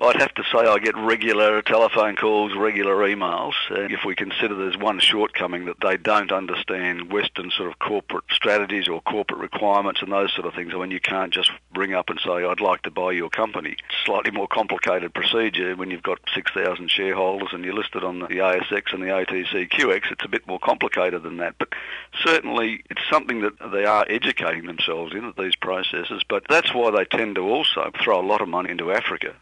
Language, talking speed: English, 210 wpm